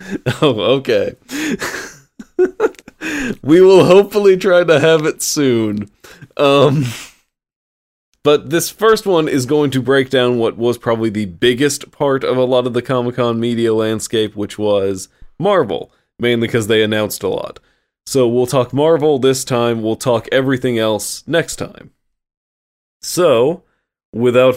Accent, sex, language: American, male, English